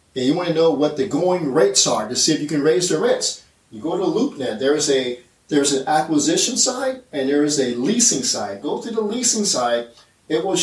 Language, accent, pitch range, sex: English, American, 130-195 Hz, male